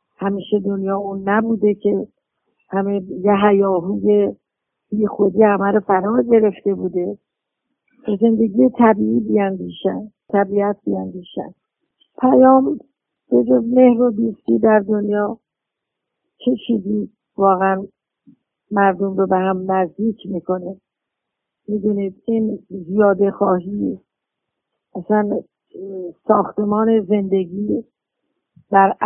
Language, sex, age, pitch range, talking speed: Persian, female, 50-69, 190-215 Hz, 95 wpm